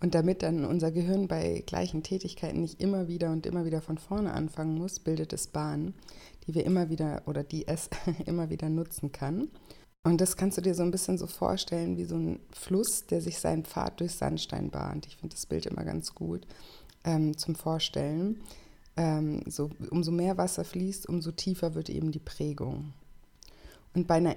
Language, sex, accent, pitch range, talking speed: German, female, German, 150-170 Hz, 190 wpm